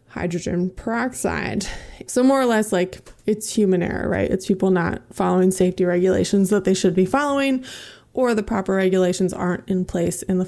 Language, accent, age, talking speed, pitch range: English, American, 20-39, 180 wpm, 185-225 Hz